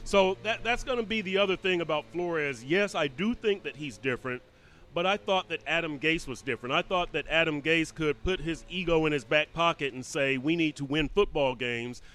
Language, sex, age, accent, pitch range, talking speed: English, male, 30-49, American, 140-180 Hz, 230 wpm